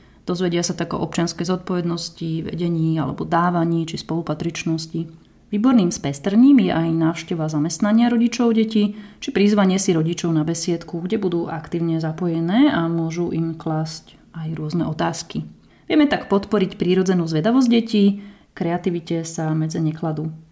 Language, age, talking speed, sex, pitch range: Slovak, 30-49, 135 wpm, female, 165-205 Hz